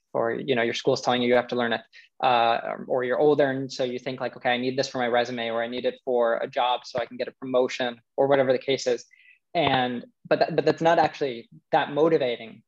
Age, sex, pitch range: 20-39, male, 125-145 Hz